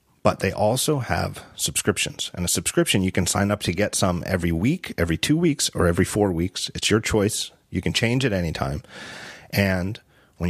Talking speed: 200 wpm